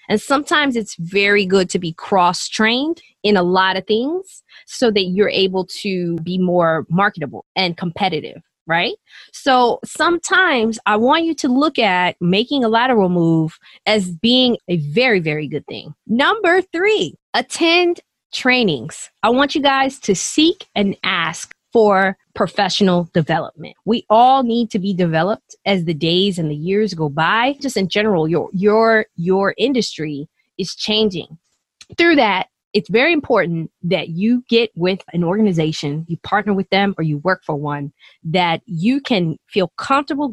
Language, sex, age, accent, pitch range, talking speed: English, female, 20-39, American, 175-245 Hz, 160 wpm